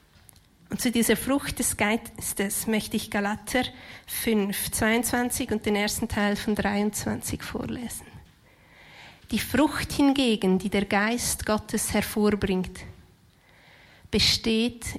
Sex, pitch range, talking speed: female, 200-245 Hz, 110 wpm